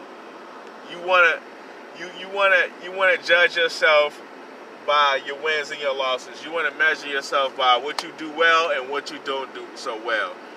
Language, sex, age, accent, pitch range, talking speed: English, male, 30-49, American, 140-160 Hz, 175 wpm